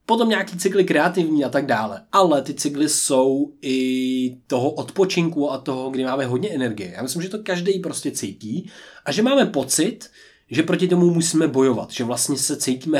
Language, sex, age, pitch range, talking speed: Czech, male, 20-39, 130-170 Hz, 185 wpm